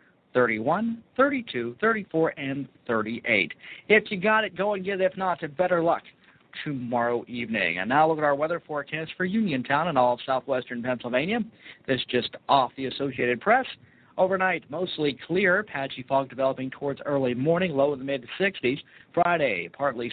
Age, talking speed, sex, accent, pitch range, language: 50-69, 160 wpm, male, American, 135-180 Hz, English